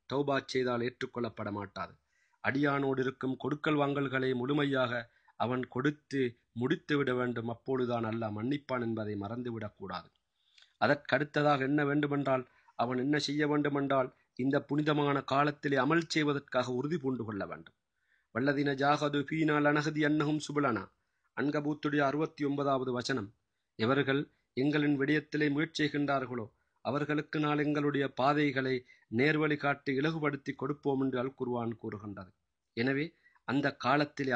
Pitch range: 125-145 Hz